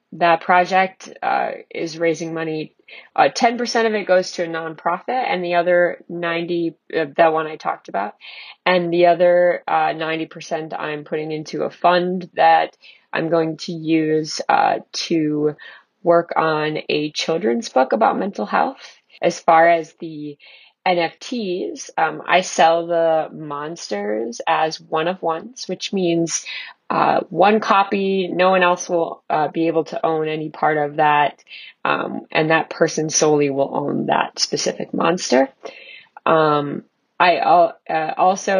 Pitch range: 160-180 Hz